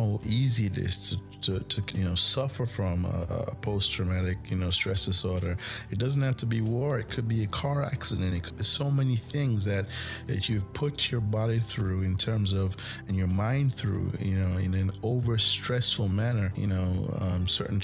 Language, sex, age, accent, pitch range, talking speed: English, male, 30-49, American, 95-115 Hz, 200 wpm